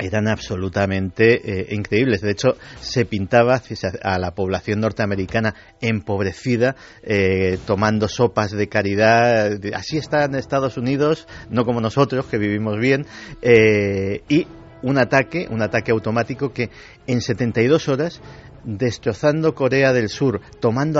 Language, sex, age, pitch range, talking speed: Spanish, male, 50-69, 105-130 Hz, 125 wpm